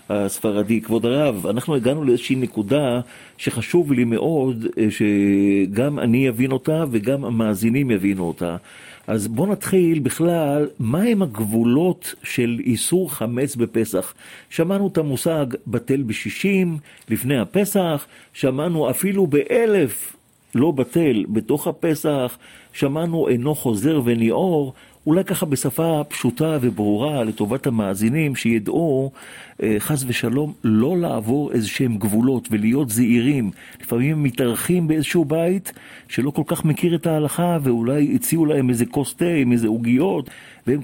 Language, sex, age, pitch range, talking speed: Hebrew, male, 40-59, 115-155 Hz, 120 wpm